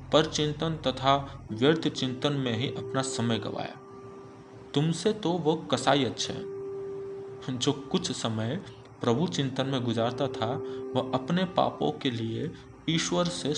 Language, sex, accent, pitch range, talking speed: Hindi, male, native, 120-140 Hz, 115 wpm